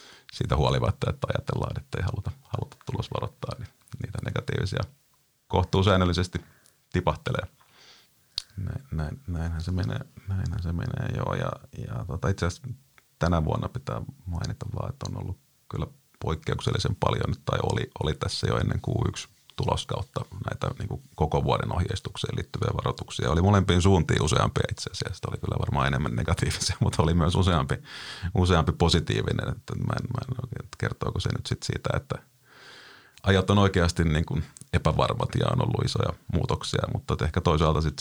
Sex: male